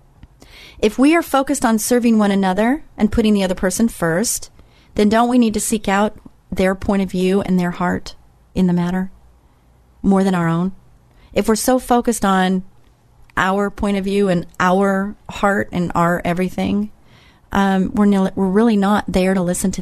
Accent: American